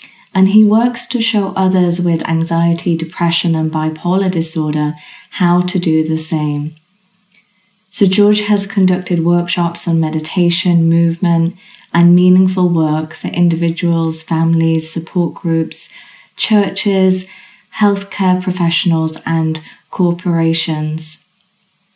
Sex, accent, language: female, British, English